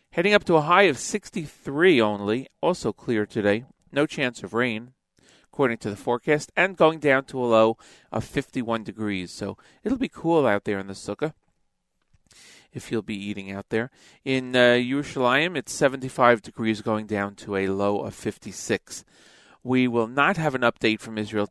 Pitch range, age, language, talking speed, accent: 105-130 Hz, 40-59, English, 180 wpm, American